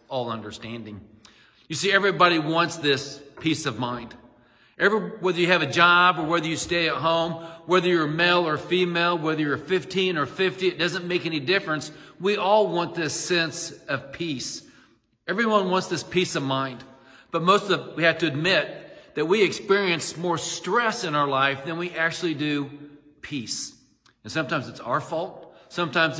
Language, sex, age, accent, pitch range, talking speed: English, male, 40-59, American, 130-175 Hz, 175 wpm